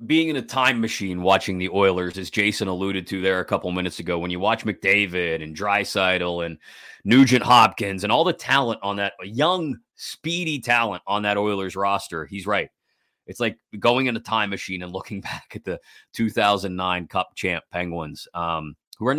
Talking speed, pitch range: 190 wpm, 95-130 Hz